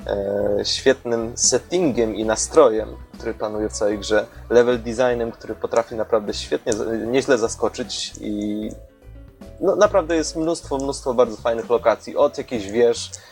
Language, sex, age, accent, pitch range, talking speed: Polish, male, 20-39, native, 110-140 Hz, 135 wpm